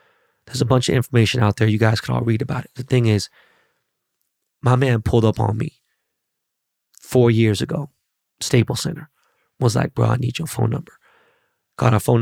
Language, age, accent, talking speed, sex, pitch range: English, 20-39, American, 190 wpm, male, 110-140 Hz